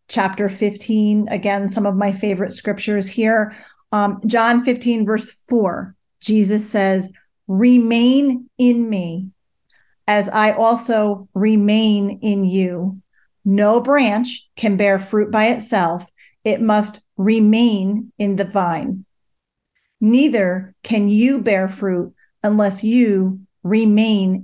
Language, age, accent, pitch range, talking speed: English, 40-59, American, 200-240 Hz, 115 wpm